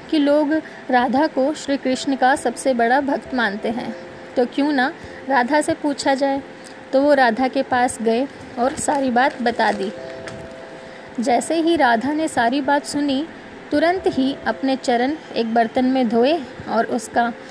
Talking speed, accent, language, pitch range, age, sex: 160 wpm, native, Hindi, 240-280 Hz, 20-39, female